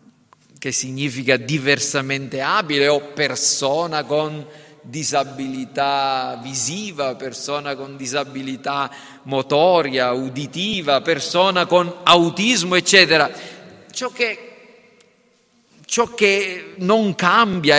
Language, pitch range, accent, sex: Italian, 140-205 Hz, native, male